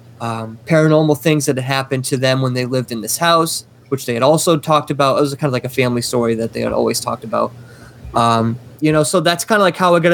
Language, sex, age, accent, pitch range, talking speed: English, male, 20-39, American, 125-150 Hz, 265 wpm